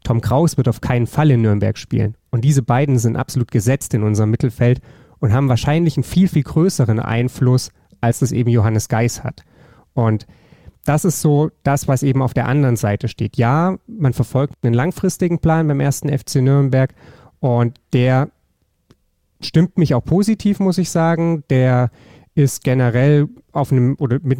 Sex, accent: male, German